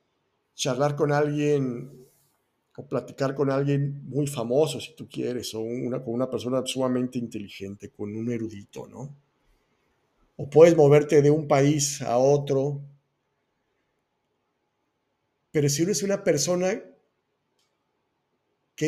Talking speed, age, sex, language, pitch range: 120 wpm, 50-69, male, Spanish, 125-155 Hz